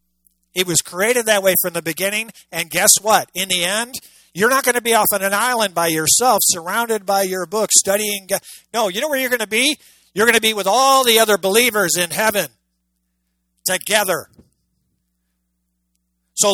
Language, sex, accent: English, male, American